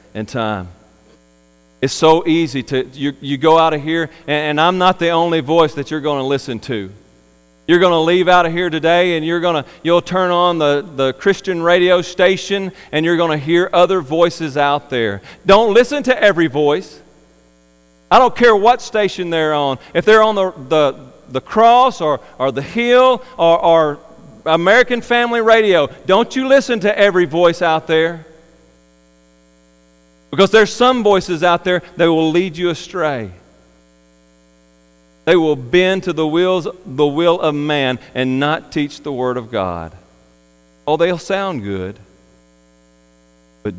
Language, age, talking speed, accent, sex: English, 40-59, 165 wpm, American, male